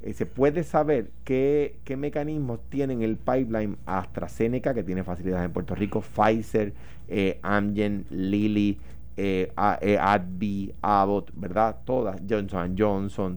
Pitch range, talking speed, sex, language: 100-140 Hz, 140 wpm, male, Spanish